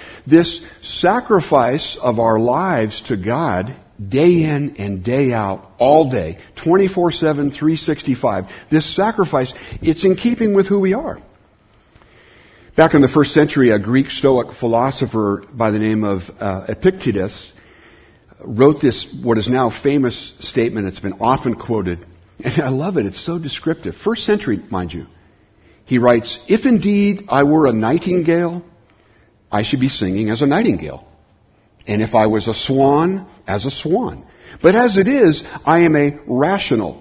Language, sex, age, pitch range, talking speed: English, male, 60-79, 110-160 Hz, 155 wpm